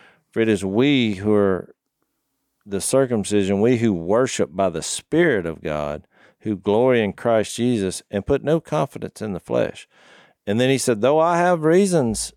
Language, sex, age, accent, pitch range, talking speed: English, male, 50-69, American, 100-130 Hz, 175 wpm